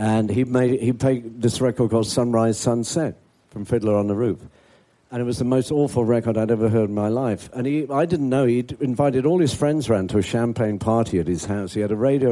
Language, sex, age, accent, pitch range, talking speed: English, male, 50-69, British, 105-135 Hz, 245 wpm